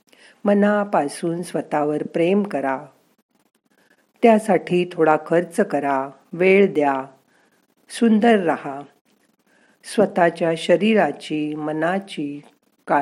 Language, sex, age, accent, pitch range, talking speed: Marathi, female, 50-69, native, 155-220 Hz, 75 wpm